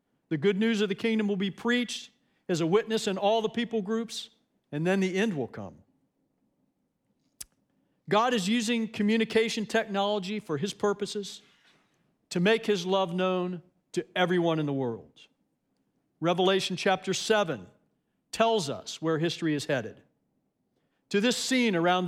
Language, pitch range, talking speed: English, 165-220 Hz, 145 wpm